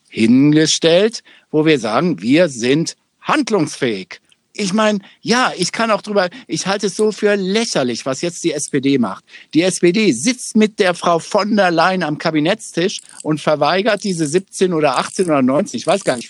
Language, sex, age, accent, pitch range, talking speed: German, male, 60-79, German, 155-210 Hz, 175 wpm